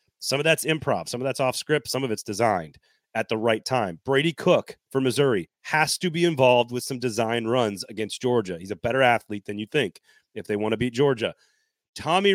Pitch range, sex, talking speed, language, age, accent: 120-160 Hz, male, 220 wpm, English, 30-49, American